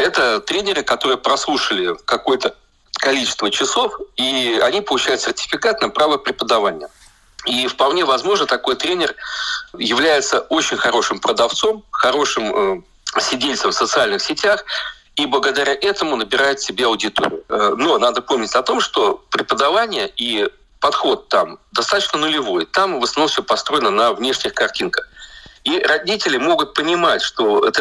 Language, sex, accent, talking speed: Russian, male, native, 130 wpm